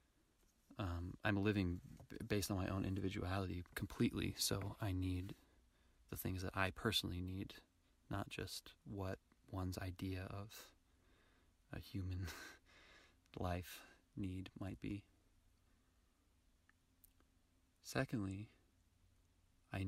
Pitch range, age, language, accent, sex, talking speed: 85-100 Hz, 30-49, English, American, male, 95 wpm